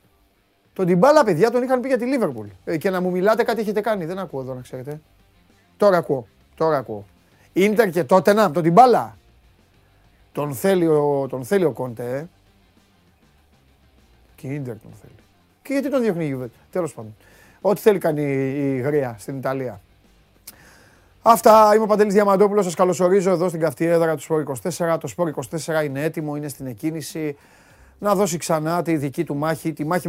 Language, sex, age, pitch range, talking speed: Greek, male, 30-49, 135-185 Hz, 170 wpm